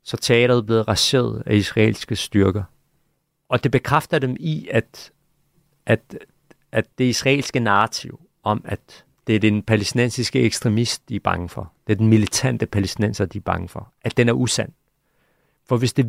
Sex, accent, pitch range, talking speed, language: male, native, 105-130 Hz, 170 wpm, Danish